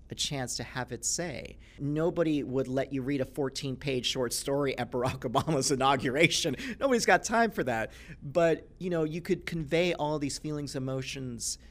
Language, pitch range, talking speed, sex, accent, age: English, 110-145 Hz, 170 wpm, male, American, 40-59